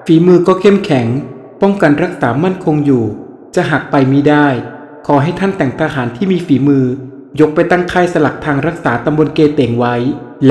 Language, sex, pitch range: Thai, male, 130-165 Hz